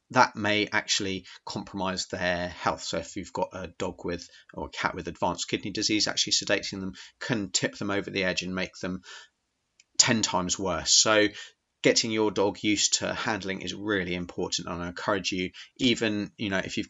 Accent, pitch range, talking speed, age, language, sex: British, 90-105 Hz, 190 wpm, 30-49, English, male